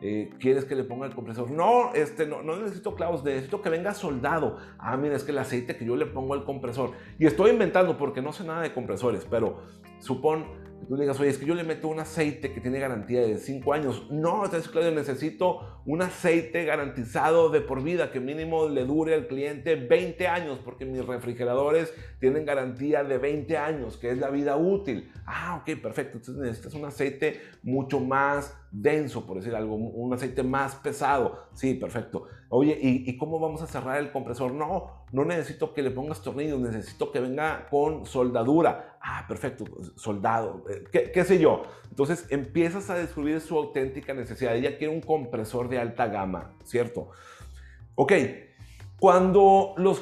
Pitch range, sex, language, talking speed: 130-165 Hz, male, Spanish, 185 wpm